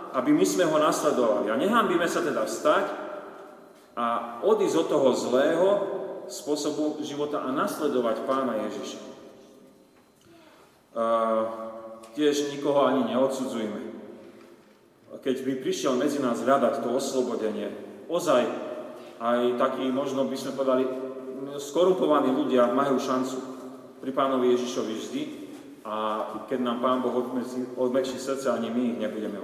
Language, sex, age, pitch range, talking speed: Slovak, male, 30-49, 125-145 Hz, 125 wpm